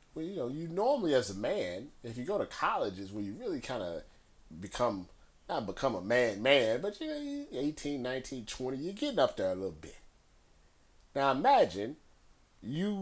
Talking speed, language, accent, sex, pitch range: 185 wpm, English, American, male, 105-140 Hz